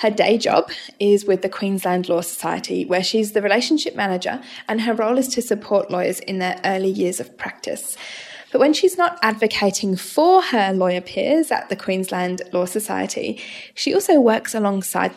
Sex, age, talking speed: female, 10-29, 180 wpm